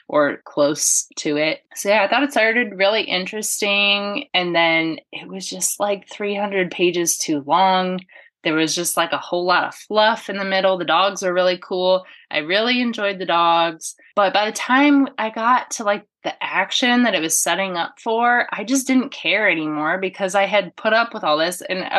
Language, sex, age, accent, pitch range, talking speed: English, female, 20-39, American, 175-235 Hz, 205 wpm